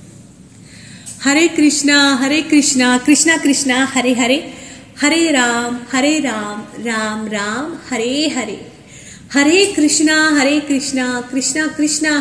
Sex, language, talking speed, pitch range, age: female, Hindi, 110 wpm, 240-300 Hz, 30-49